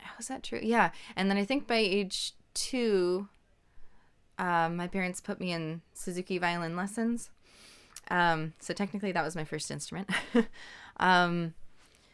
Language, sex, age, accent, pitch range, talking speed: English, female, 20-39, American, 160-205 Hz, 150 wpm